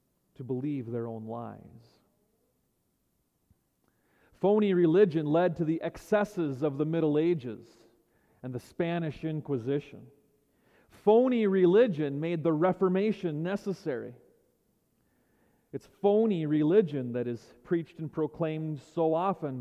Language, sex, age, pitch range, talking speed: English, male, 40-59, 135-195 Hz, 105 wpm